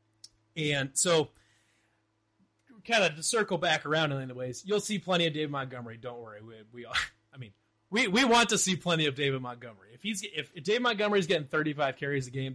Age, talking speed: 30-49, 210 wpm